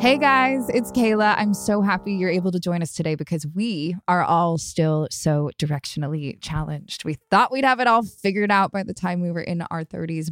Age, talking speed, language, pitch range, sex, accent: 20-39, 215 wpm, English, 160-195 Hz, female, American